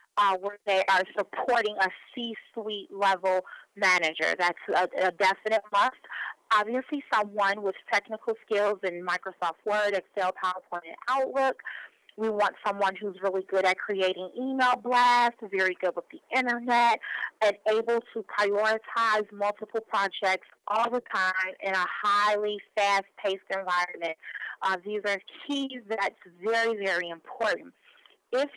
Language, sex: English, female